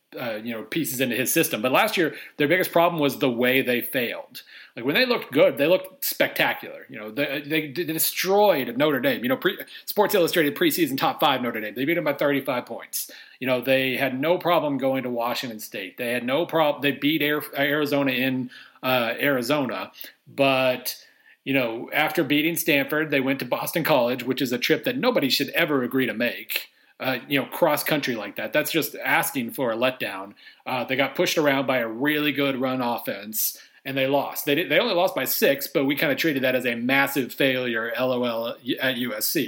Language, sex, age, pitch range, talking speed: English, male, 40-59, 130-155 Hz, 210 wpm